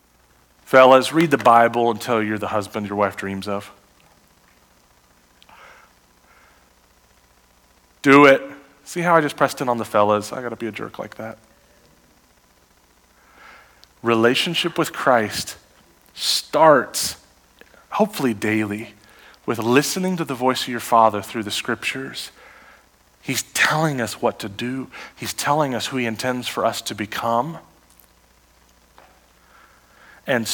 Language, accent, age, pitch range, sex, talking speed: English, American, 30-49, 100-140 Hz, male, 125 wpm